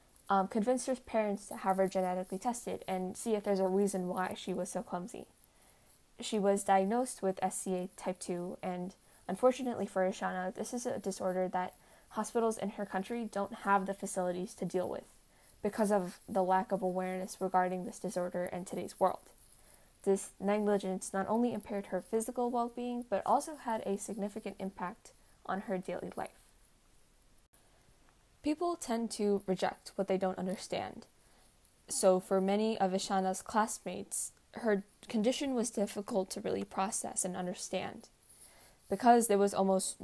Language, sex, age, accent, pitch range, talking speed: English, female, 10-29, American, 185-220 Hz, 155 wpm